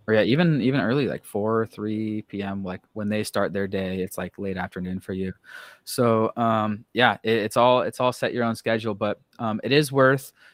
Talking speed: 220 wpm